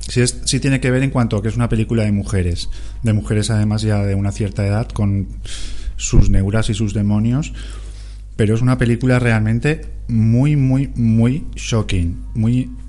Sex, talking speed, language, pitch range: male, 180 wpm, Spanish, 100-115 Hz